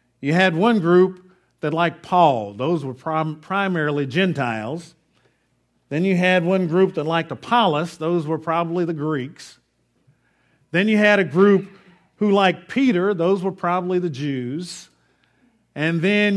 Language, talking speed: English, 145 wpm